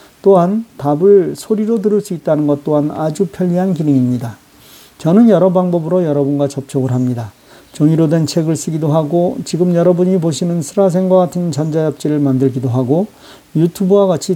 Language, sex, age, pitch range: Korean, male, 40-59, 135-180 Hz